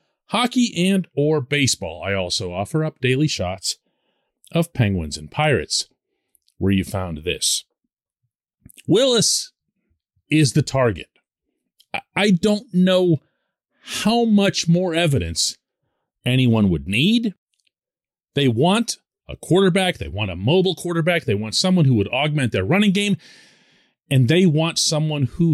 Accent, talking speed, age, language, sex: American, 130 wpm, 40-59, English, male